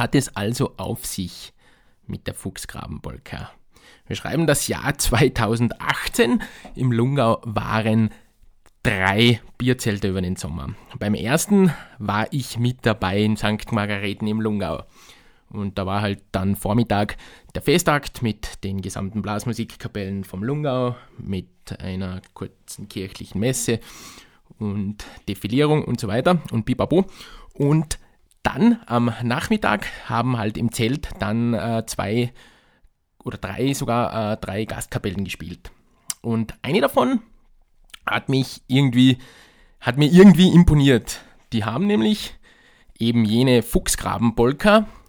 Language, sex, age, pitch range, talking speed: German, male, 20-39, 105-135 Hz, 120 wpm